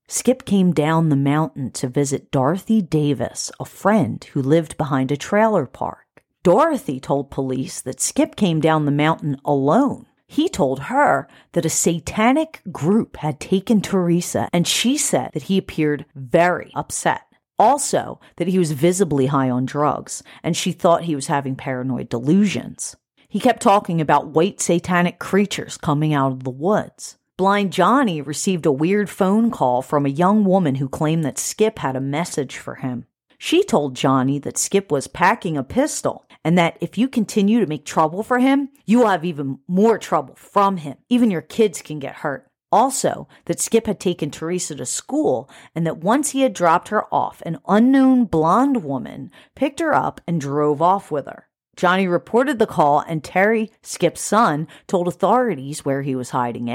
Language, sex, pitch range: English, female, 145-205 Hz